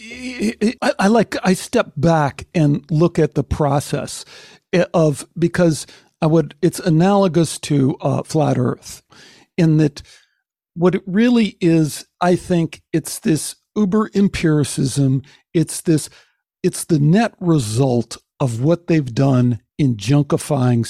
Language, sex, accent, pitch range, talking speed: English, male, American, 135-185 Hz, 130 wpm